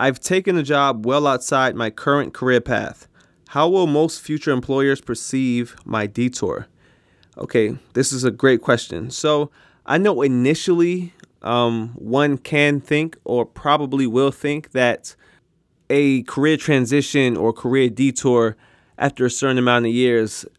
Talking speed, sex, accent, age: 145 wpm, male, American, 20-39